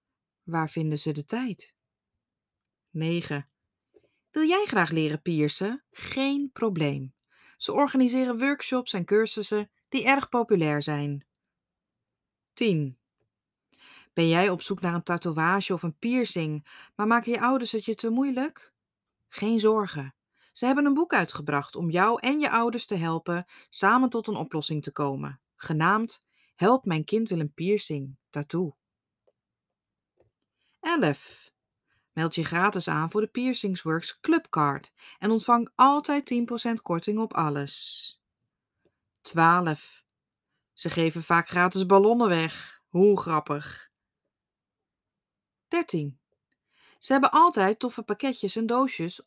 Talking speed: 125 wpm